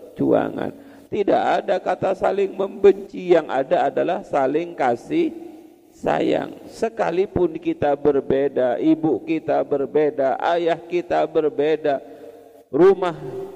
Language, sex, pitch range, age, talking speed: Indonesian, male, 130-185 Hz, 40-59, 95 wpm